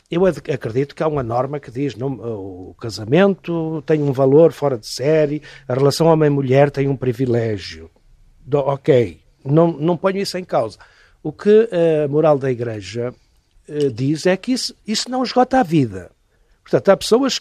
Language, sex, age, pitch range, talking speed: Portuguese, male, 60-79, 130-185 Hz, 160 wpm